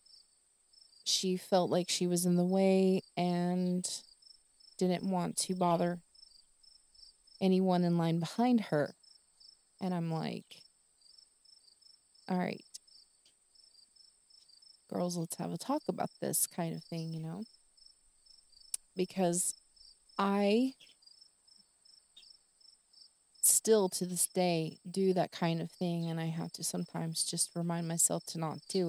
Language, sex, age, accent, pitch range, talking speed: English, female, 20-39, American, 170-190 Hz, 120 wpm